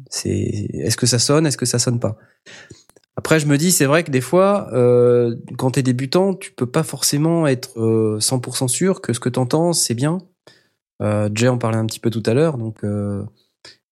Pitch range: 110-145 Hz